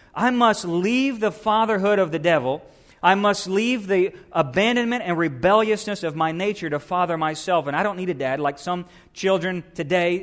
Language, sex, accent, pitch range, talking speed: English, male, American, 150-185 Hz, 180 wpm